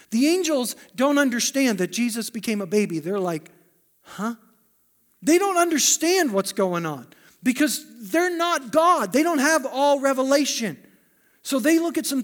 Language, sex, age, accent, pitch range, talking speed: English, male, 40-59, American, 175-235 Hz, 155 wpm